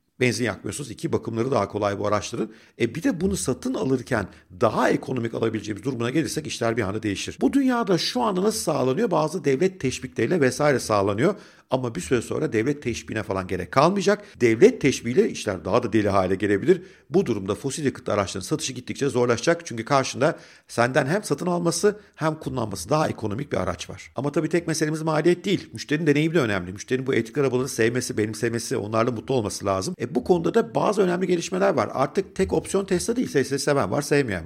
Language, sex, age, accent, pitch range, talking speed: Turkish, male, 50-69, native, 110-155 Hz, 190 wpm